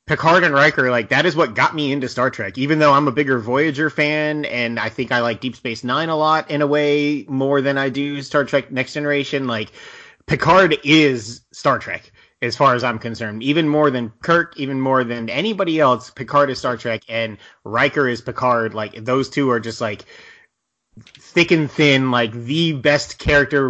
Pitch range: 115-140 Hz